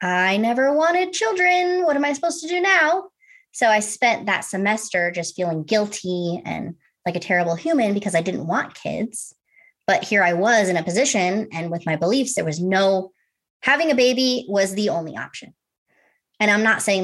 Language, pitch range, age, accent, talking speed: English, 170-240 Hz, 20-39, American, 190 wpm